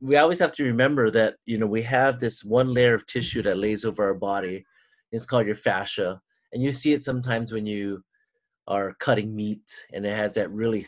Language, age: English, 30-49